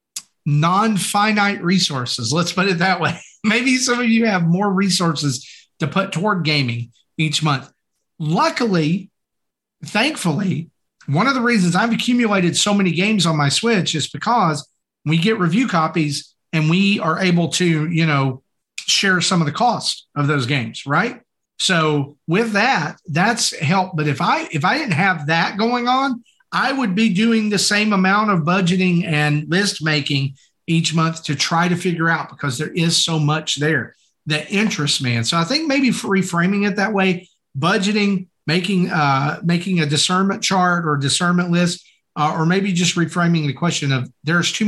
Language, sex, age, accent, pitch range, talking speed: English, male, 40-59, American, 155-200 Hz, 170 wpm